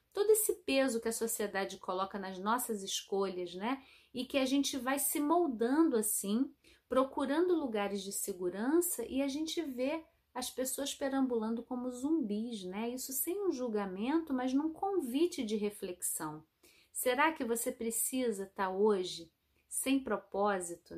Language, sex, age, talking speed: Portuguese, female, 30-49, 145 wpm